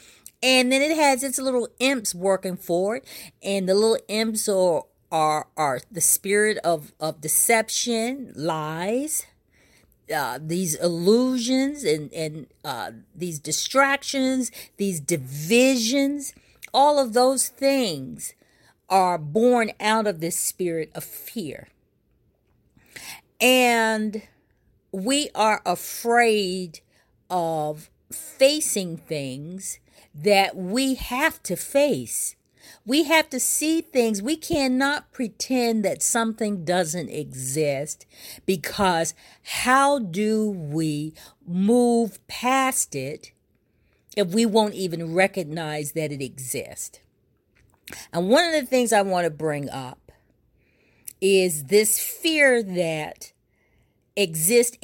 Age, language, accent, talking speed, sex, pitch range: 40-59, English, American, 105 wpm, female, 160-250 Hz